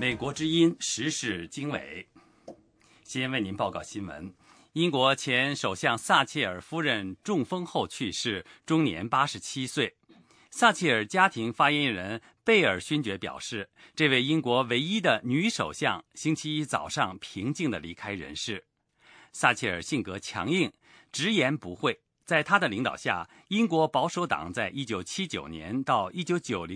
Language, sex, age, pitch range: English, male, 50-69, 115-170 Hz